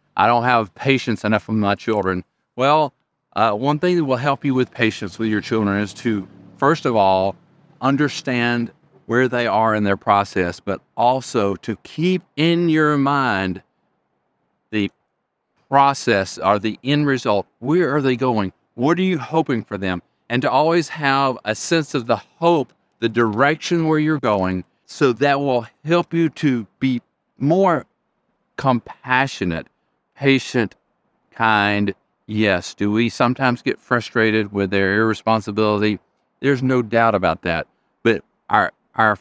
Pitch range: 105-140 Hz